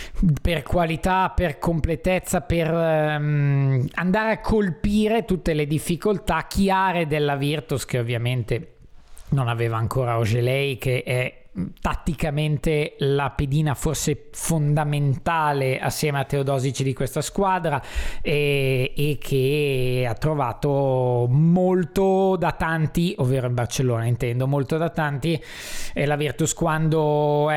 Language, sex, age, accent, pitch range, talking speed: Italian, male, 20-39, native, 135-175 Hz, 120 wpm